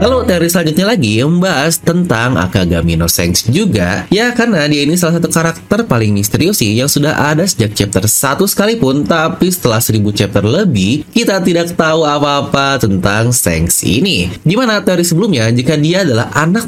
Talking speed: 165 wpm